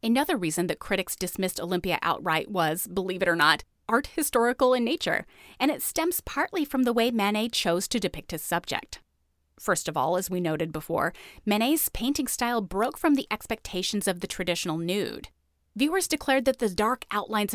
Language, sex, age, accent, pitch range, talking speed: English, female, 30-49, American, 175-245 Hz, 180 wpm